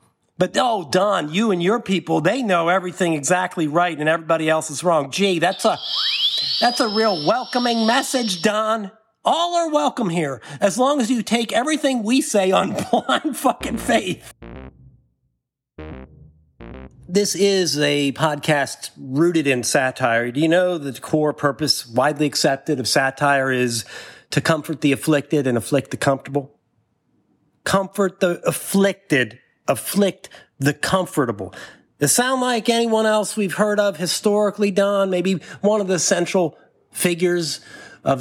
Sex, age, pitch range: male, 50-69, 150-220 Hz